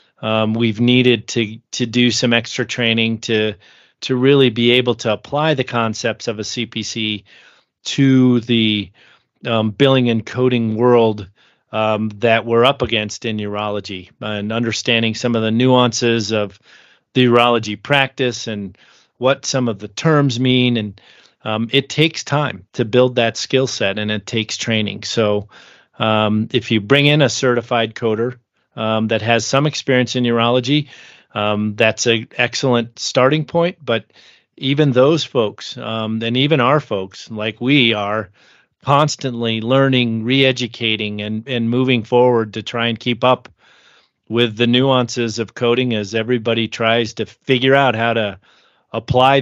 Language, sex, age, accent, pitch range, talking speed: English, male, 30-49, American, 110-130 Hz, 150 wpm